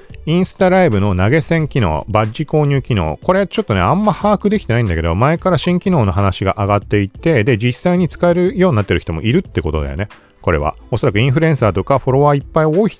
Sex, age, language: male, 40-59, Japanese